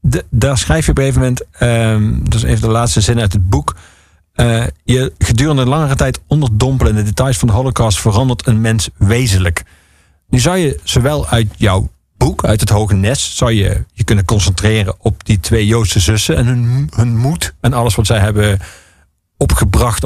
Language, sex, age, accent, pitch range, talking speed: Dutch, male, 50-69, Dutch, 100-125 Hz, 195 wpm